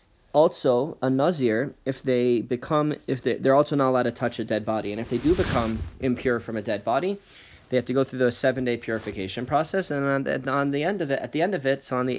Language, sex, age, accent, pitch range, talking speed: English, male, 30-49, American, 110-140 Hz, 255 wpm